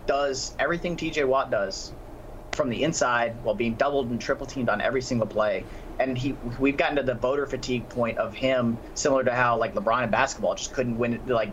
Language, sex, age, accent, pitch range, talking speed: English, male, 30-49, American, 120-140 Hz, 210 wpm